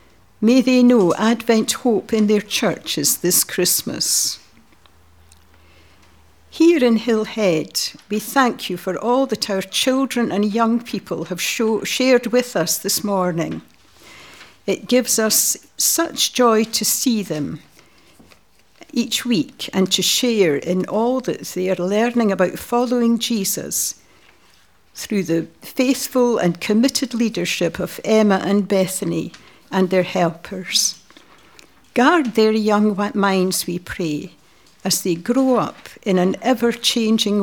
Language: English